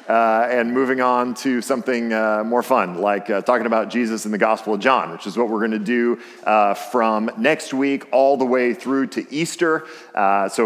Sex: male